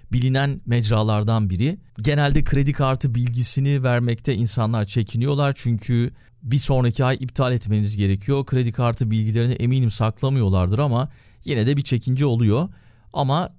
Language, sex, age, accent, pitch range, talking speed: Turkish, male, 40-59, native, 115-145 Hz, 130 wpm